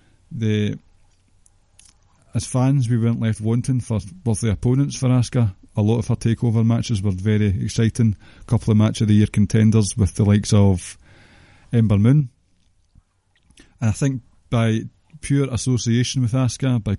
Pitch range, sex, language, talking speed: 100-120 Hz, male, English, 155 wpm